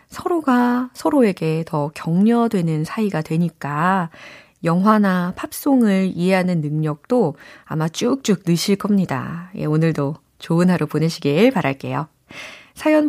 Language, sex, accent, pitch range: Korean, female, native, 165-255 Hz